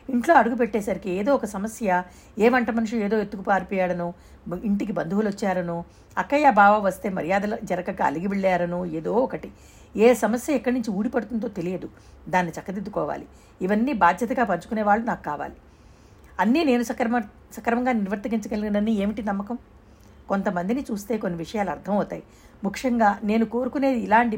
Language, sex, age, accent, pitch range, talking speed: Telugu, female, 60-79, native, 190-240 Hz, 130 wpm